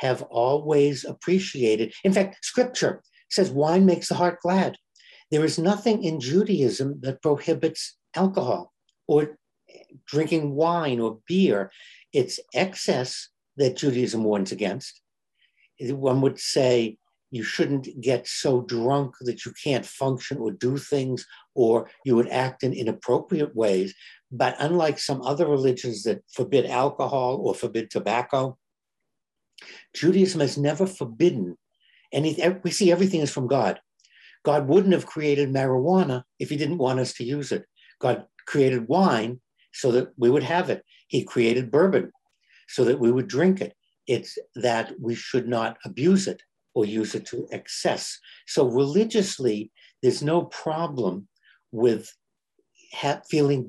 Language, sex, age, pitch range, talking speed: English, male, 60-79, 125-170 Hz, 140 wpm